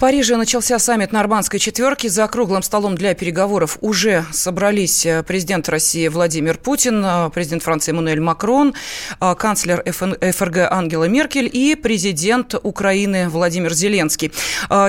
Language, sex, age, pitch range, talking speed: Russian, female, 20-39, 175-230 Hz, 120 wpm